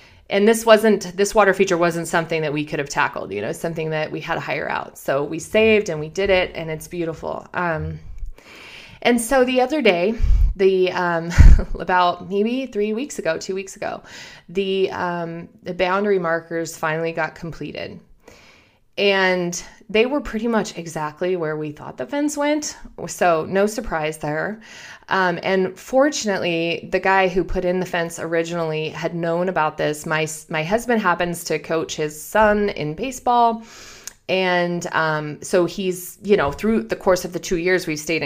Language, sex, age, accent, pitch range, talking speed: English, female, 20-39, American, 160-200 Hz, 175 wpm